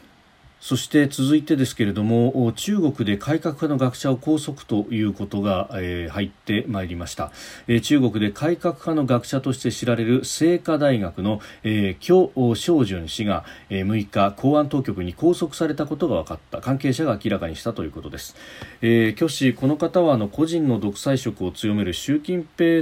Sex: male